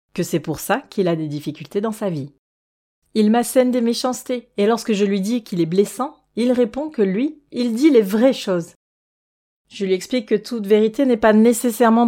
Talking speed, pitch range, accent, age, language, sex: 205 wpm, 185-250 Hz, French, 30-49, French, female